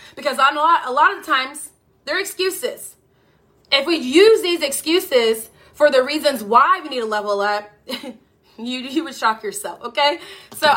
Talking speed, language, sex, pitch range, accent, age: 165 wpm, English, female, 240-315 Hz, American, 20-39